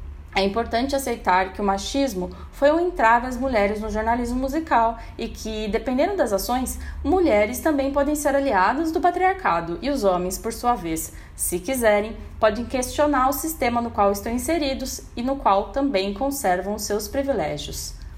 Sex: female